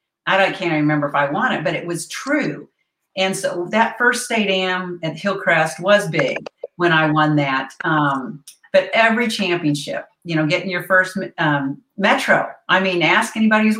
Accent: American